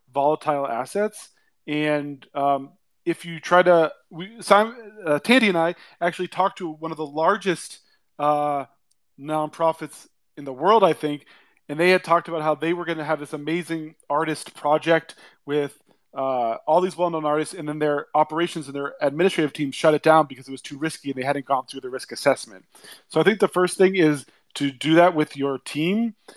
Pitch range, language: 145-180 Hz, English